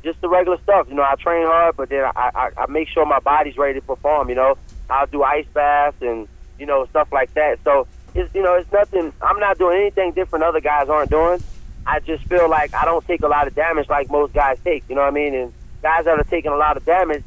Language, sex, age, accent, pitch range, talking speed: English, male, 30-49, American, 140-165 Hz, 270 wpm